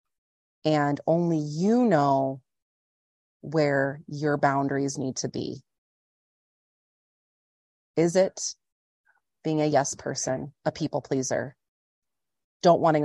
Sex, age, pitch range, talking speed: female, 30-49, 130-150 Hz, 95 wpm